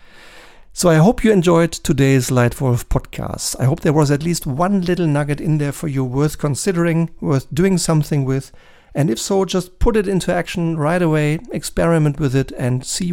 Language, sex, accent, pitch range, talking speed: German, male, German, 135-165 Hz, 190 wpm